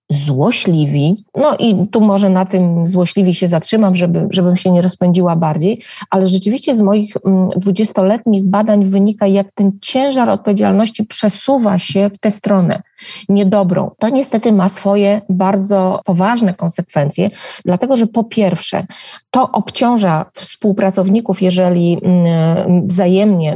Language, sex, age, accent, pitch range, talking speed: Polish, female, 30-49, native, 180-210 Hz, 120 wpm